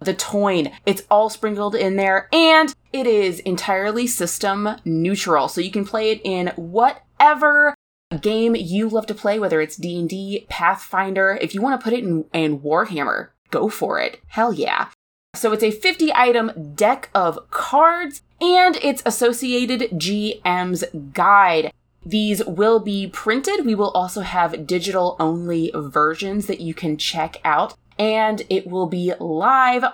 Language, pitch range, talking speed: English, 180-245 Hz, 155 wpm